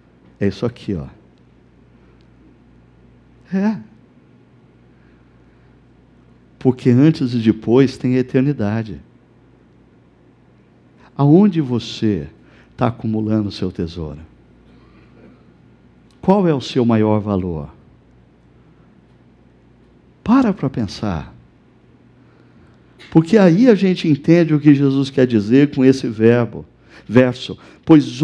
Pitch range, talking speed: 75-130 Hz, 90 wpm